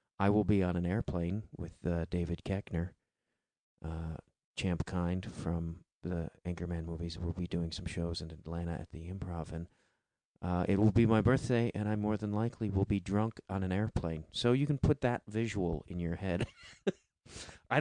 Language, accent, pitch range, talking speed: English, American, 85-110 Hz, 185 wpm